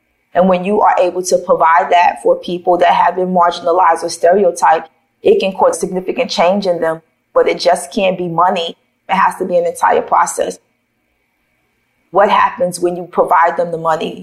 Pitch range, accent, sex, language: 170-225 Hz, American, female, English